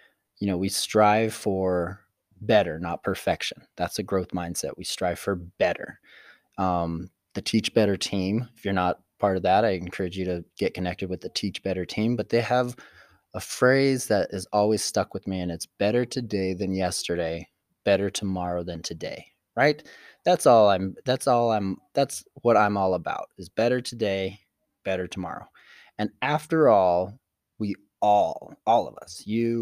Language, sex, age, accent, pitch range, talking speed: English, male, 20-39, American, 95-115 Hz, 170 wpm